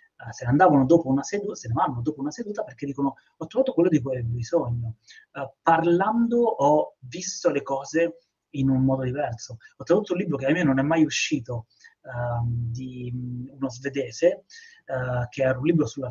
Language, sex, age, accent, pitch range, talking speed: Italian, male, 30-49, native, 130-155 Hz, 195 wpm